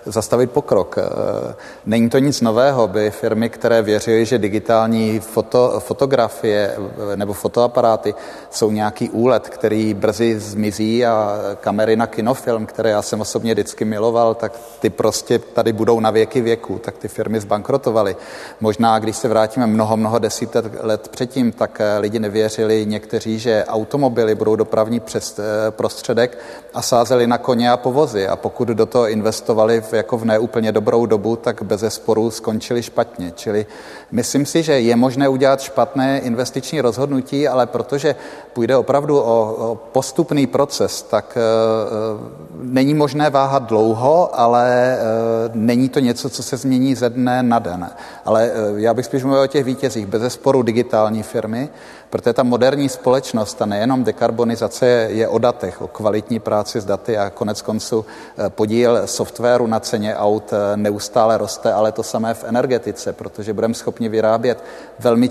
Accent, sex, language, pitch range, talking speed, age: native, male, Czech, 110-125 Hz, 155 wpm, 30-49